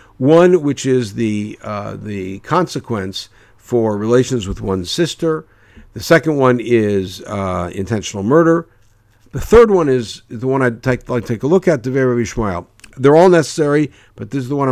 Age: 60-79